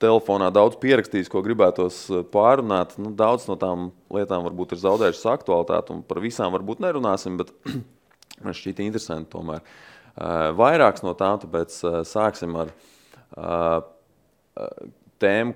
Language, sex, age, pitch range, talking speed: English, male, 20-39, 90-105 Hz, 135 wpm